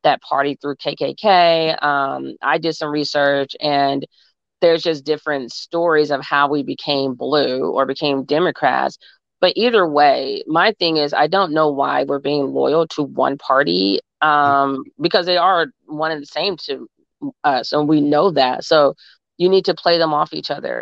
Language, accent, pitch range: English, American, 140-165 Hz